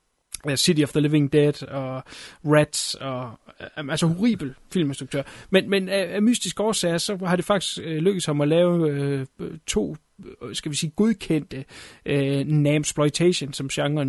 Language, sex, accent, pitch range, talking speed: Danish, male, native, 140-170 Hz, 150 wpm